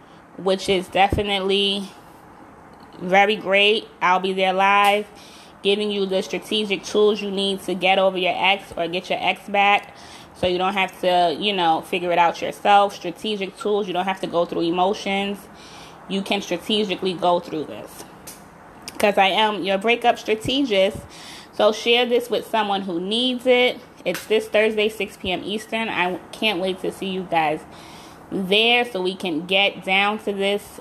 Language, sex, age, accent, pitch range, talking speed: English, female, 20-39, American, 185-210 Hz, 170 wpm